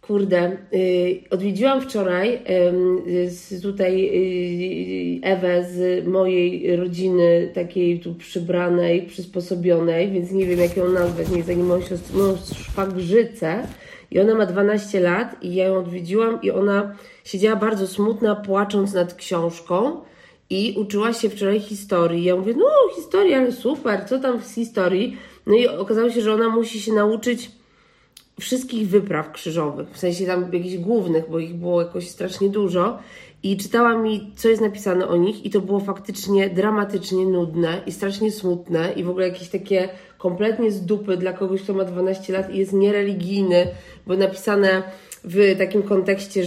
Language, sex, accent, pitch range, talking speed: Polish, female, native, 180-205 Hz, 155 wpm